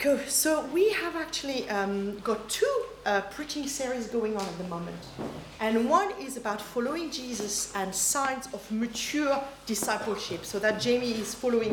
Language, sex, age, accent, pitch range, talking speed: English, female, 40-59, French, 200-275 Hz, 160 wpm